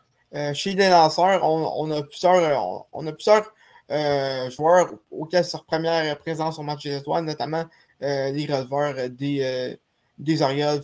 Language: French